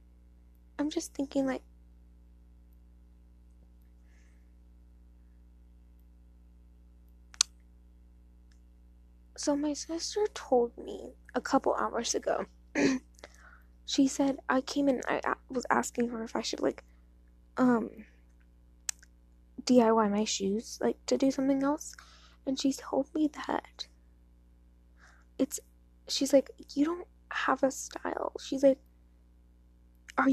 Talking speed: 100 wpm